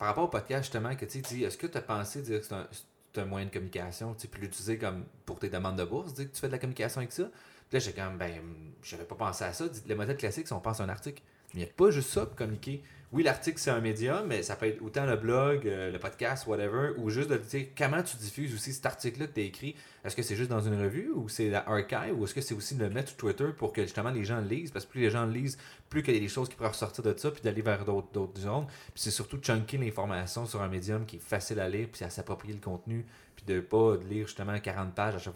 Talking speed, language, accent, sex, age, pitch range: 300 wpm, French, Canadian, male, 30-49, 100-130 Hz